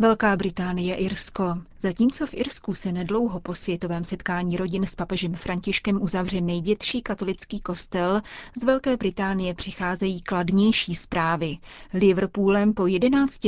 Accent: native